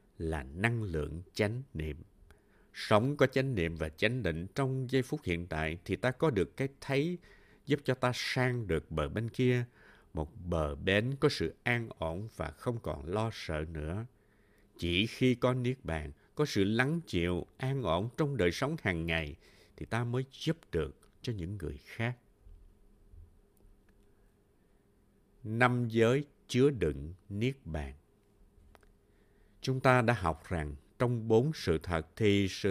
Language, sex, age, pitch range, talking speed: Vietnamese, male, 60-79, 90-130 Hz, 160 wpm